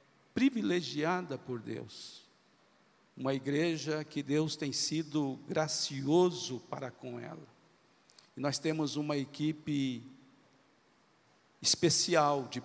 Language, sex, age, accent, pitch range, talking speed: Portuguese, male, 50-69, Brazilian, 135-160 Hz, 90 wpm